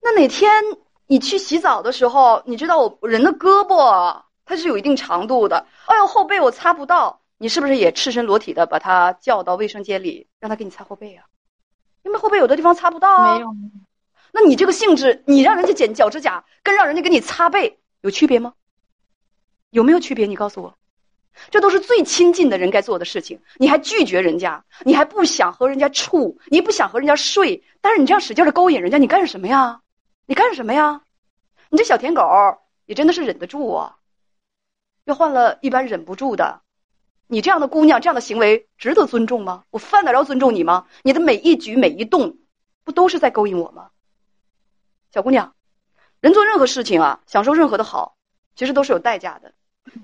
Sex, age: female, 30-49